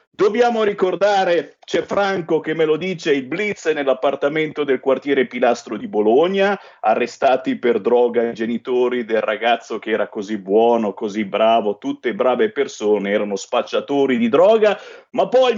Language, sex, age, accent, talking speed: Italian, male, 50-69, native, 145 wpm